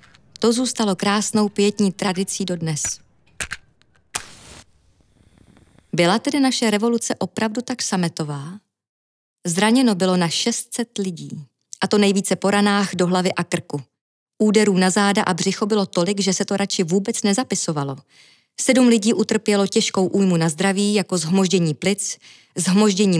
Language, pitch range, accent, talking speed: Czech, 175-220 Hz, native, 130 wpm